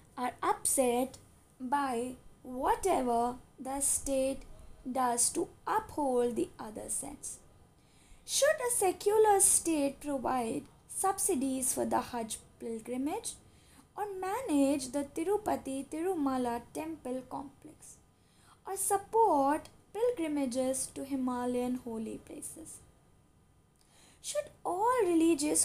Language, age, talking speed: English, 20-39, 90 wpm